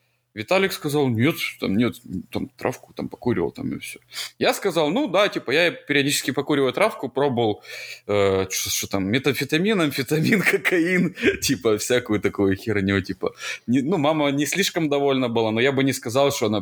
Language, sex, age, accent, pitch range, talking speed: Ukrainian, male, 20-39, native, 100-140 Hz, 175 wpm